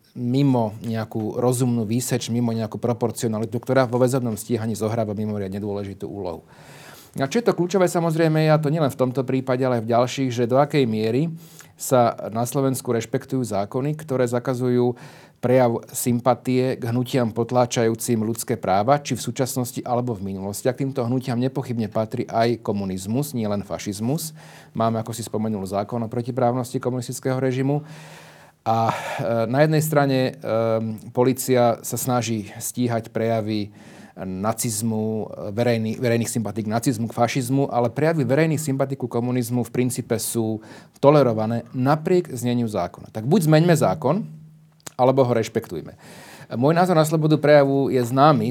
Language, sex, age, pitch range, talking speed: Slovak, male, 40-59, 110-135 Hz, 145 wpm